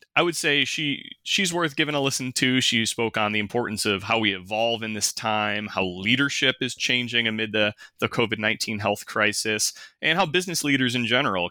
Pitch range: 100-125 Hz